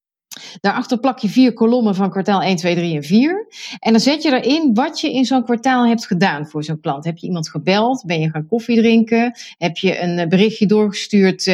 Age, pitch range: 30-49, 185-240 Hz